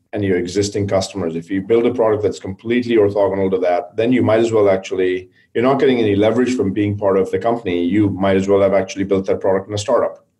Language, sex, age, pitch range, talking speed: English, male, 40-59, 95-110 Hz, 250 wpm